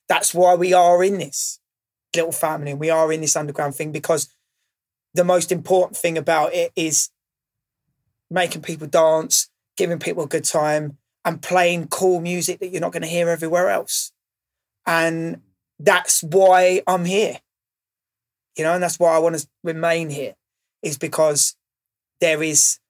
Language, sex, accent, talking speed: English, male, British, 160 wpm